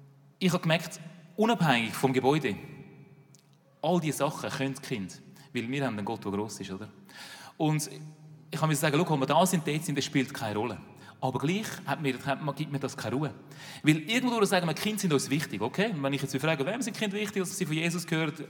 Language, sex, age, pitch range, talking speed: German, male, 30-49, 140-180 Hz, 220 wpm